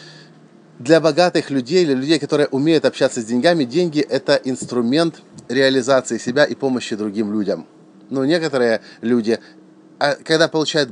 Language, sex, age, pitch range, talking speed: English, male, 30-49, 105-150 Hz, 135 wpm